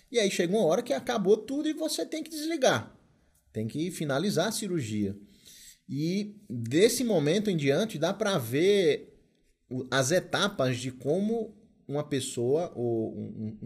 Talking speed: 150 wpm